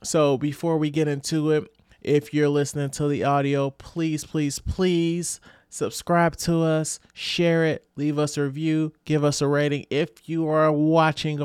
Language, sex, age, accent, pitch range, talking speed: English, male, 30-49, American, 105-145 Hz, 170 wpm